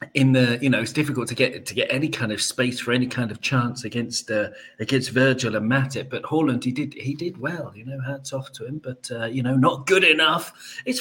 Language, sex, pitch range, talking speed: English, male, 125-155 Hz, 250 wpm